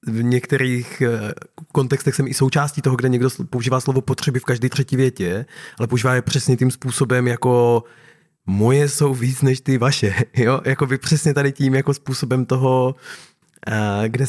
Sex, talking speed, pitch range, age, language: male, 160 wpm, 120-140 Hz, 20-39, Czech